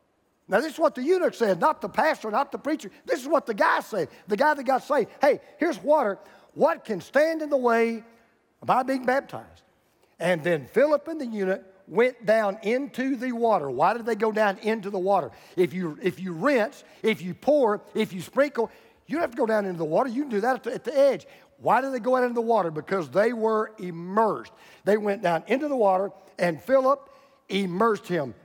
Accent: American